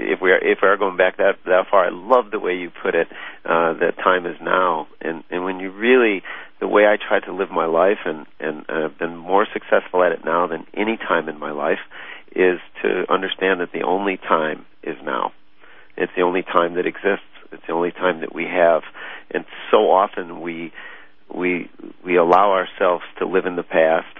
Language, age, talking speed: English, 50-69, 210 wpm